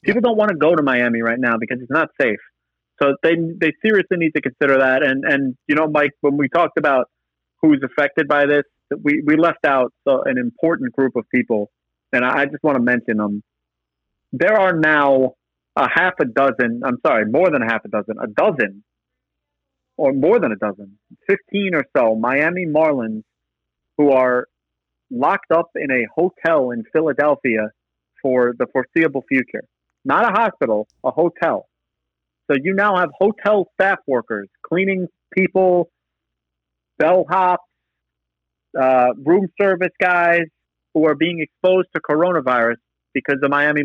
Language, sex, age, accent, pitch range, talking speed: English, male, 40-59, American, 115-165 Hz, 165 wpm